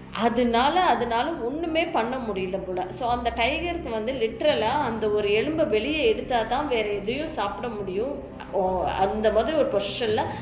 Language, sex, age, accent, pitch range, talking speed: Tamil, female, 20-39, native, 200-270 Hz, 145 wpm